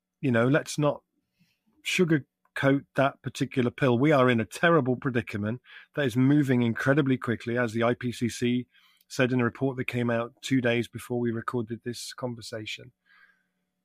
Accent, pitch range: British, 120-155 Hz